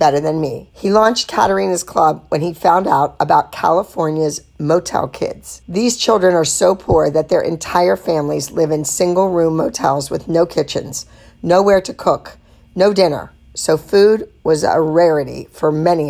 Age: 50-69